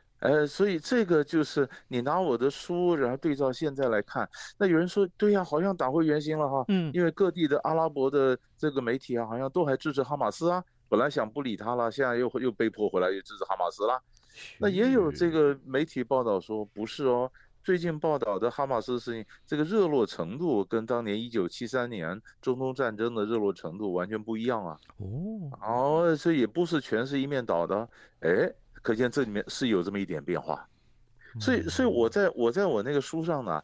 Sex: male